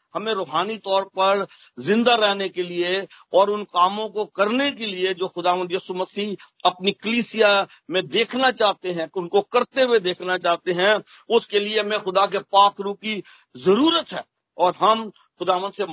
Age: 50-69